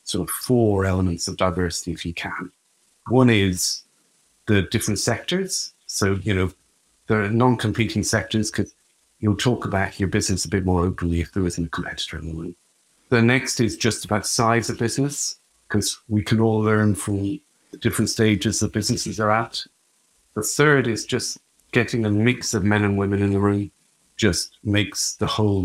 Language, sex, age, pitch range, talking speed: English, male, 50-69, 100-125 Hz, 185 wpm